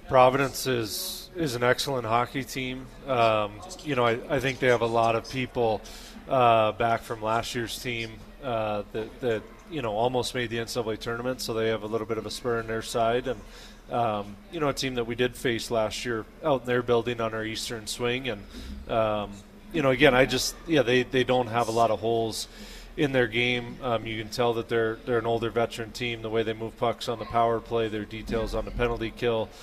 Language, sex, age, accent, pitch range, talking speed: English, male, 30-49, American, 110-125 Hz, 225 wpm